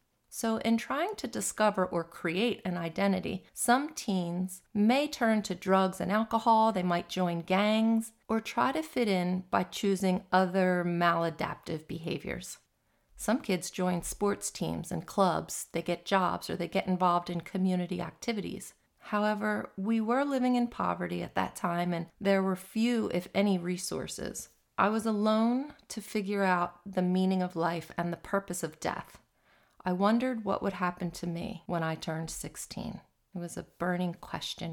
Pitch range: 175-215 Hz